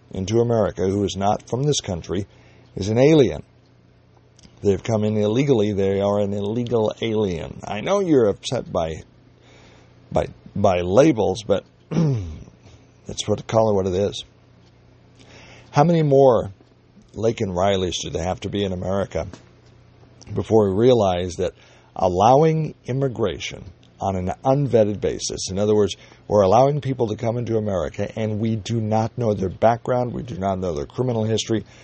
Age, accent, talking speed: 60-79, American, 155 wpm